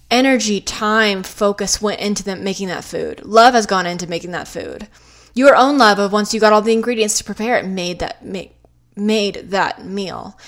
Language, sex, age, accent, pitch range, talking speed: English, female, 20-39, American, 195-255 Hz, 195 wpm